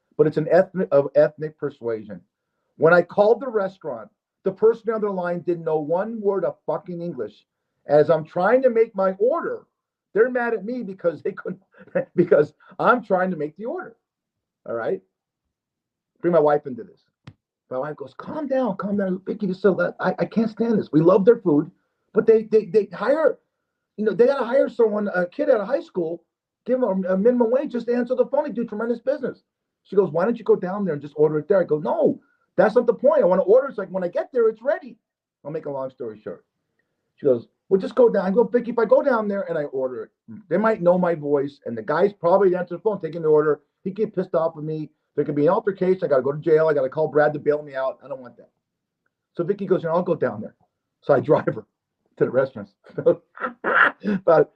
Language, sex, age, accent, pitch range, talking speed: English, male, 40-59, American, 155-230 Hz, 240 wpm